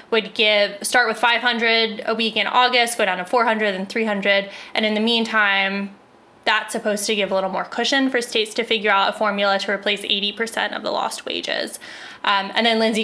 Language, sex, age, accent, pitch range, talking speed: English, female, 10-29, American, 205-245 Hz, 205 wpm